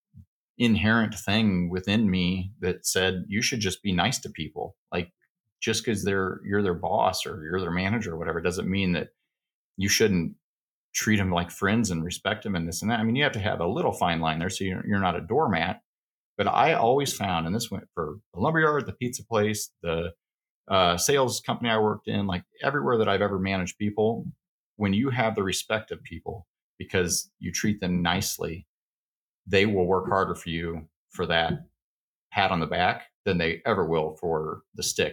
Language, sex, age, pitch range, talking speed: English, male, 40-59, 90-110 Hz, 200 wpm